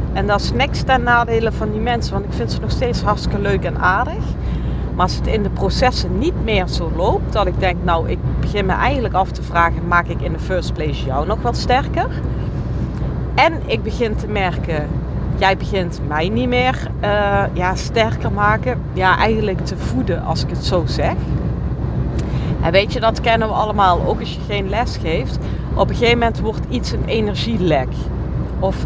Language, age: Dutch, 40-59